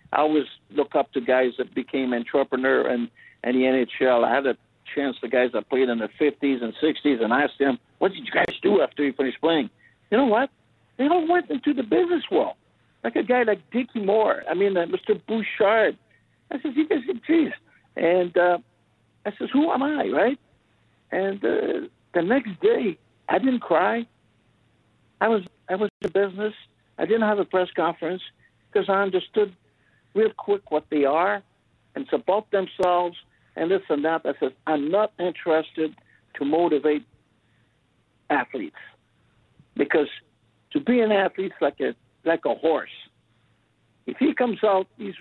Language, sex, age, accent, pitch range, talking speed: English, male, 60-79, American, 140-215 Hz, 175 wpm